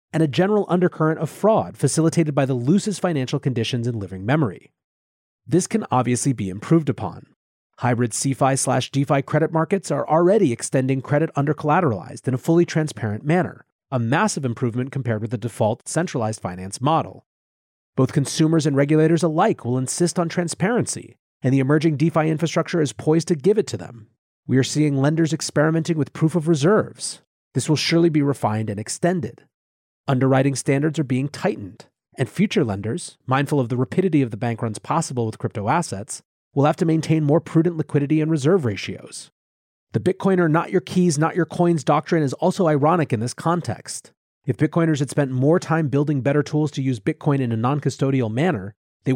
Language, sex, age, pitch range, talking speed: English, male, 30-49, 125-165 Hz, 180 wpm